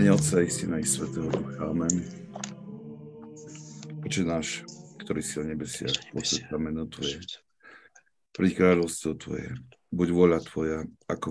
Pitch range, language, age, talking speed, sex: 75-90 Hz, Slovak, 50-69, 100 wpm, male